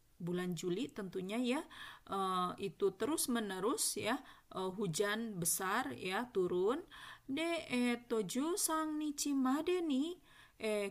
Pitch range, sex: 185-245 Hz, female